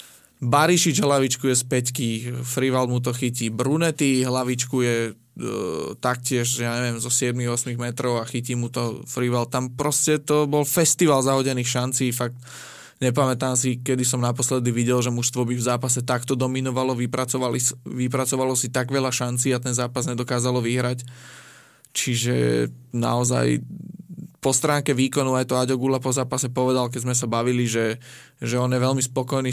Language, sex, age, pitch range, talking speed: Slovak, male, 20-39, 125-130 Hz, 155 wpm